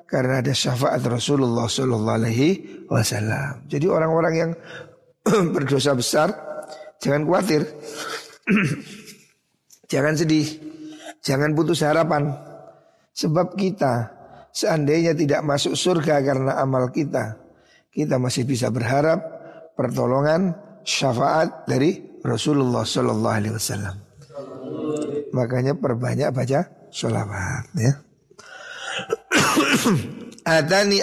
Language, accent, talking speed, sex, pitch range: Indonesian, native, 90 wpm, male, 125-160 Hz